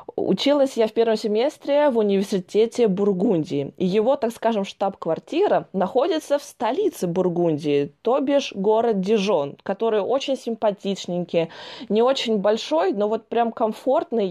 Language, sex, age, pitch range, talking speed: Russian, female, 20-39, 200-265 Hz, 130 wpm